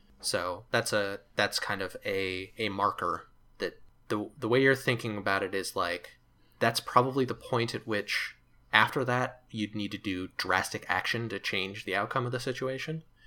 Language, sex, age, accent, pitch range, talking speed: English, male, 20-39, American, 95-120 Hz, 180 wpm